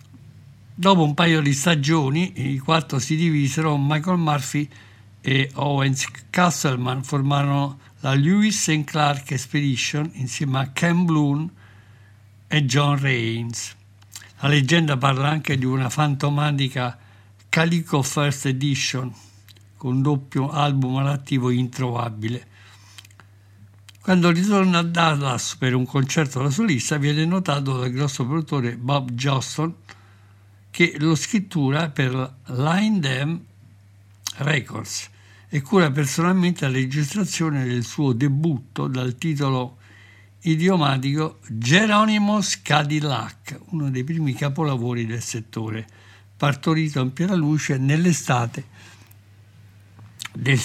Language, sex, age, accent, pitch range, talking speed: Italian, male, 60-79, native, 110-150 Hz, 105 wpm